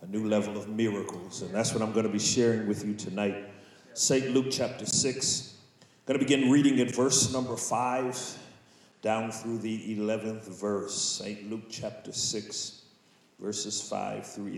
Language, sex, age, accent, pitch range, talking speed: English, male, 40-59, American, 115-145 Hz, 165 wpm